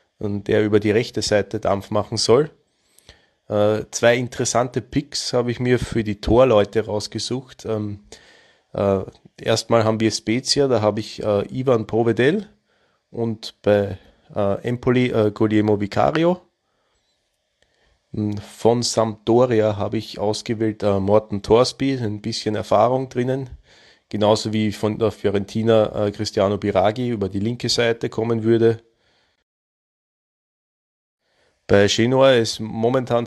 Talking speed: 125 wpm